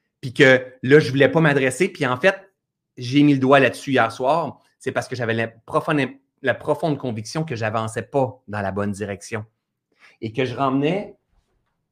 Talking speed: 190 wpm